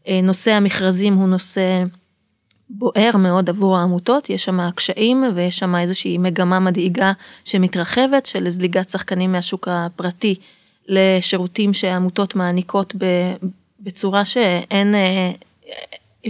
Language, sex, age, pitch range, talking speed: Hebrew, female, 20-39, 180-200 Hz, 105 wpm